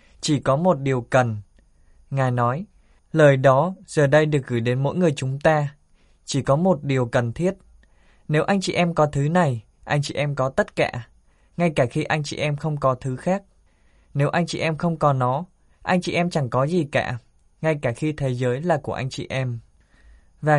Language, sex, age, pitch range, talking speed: Vietnamese, male, 20-39, 125-160 Hz, 210 wpm